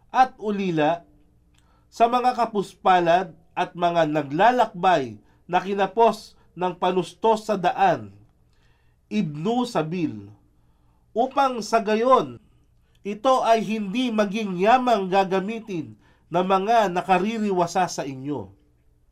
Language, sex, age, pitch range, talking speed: Filipino, male, 40-59, 150-220 Hz, 95 wpm